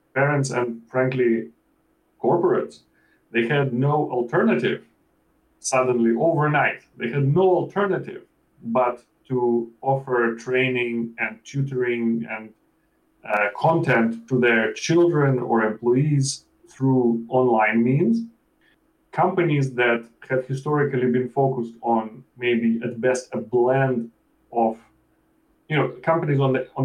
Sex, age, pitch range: male, 30-49, 115-140 Hz